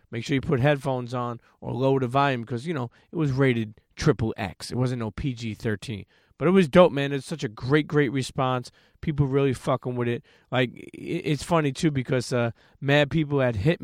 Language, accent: English, American